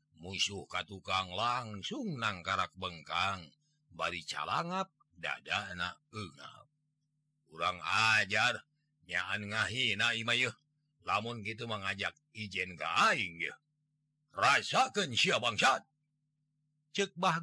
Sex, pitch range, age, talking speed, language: male, 100-150 Hz, 50-69, 85 wpm, Indonesian